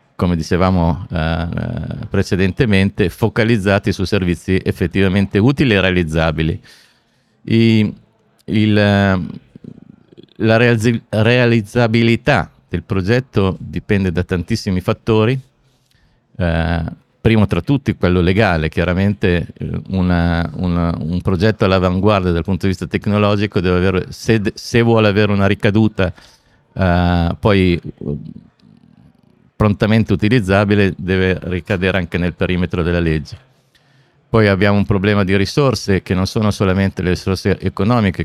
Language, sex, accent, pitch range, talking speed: Italian, male, native, 90-110 Hz, 110 wpm